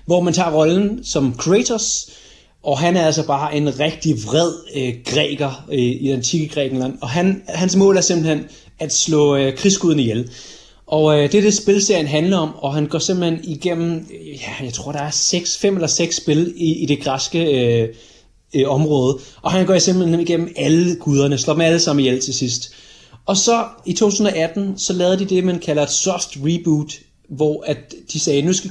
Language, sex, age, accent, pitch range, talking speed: Danish, male, 30-49, native, 135-170 Hz, 180 wpm